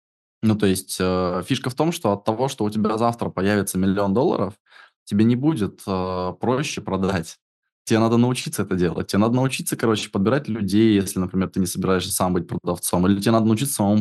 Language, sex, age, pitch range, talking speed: Russian, male, 20-39, 95-115 Hz, 200 wpm